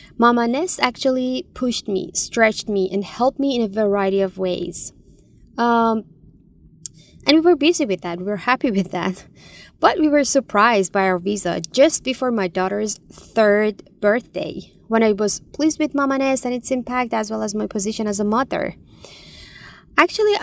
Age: 20-39